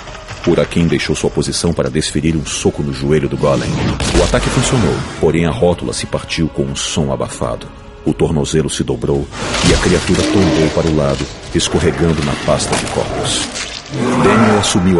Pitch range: 75-100 Hz